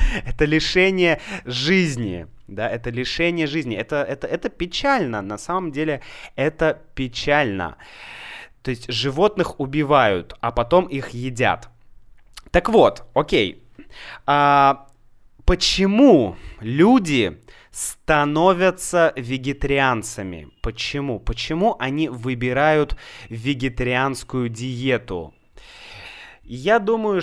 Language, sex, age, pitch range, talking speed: Russian, male, 20-39, 115-160 Hz, 85 wpm